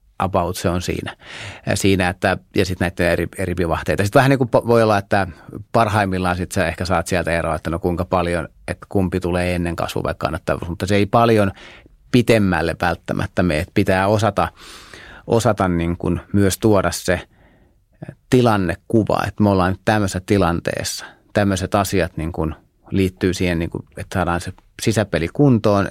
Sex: male